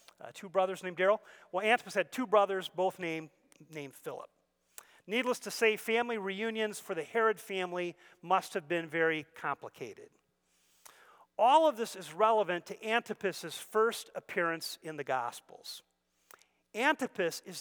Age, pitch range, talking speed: 40-59, 165-215 Hz, 145 wpm